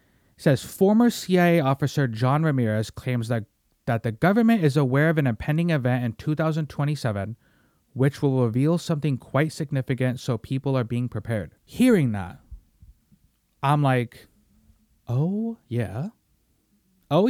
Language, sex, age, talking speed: English, male, 30-49, 130 wpm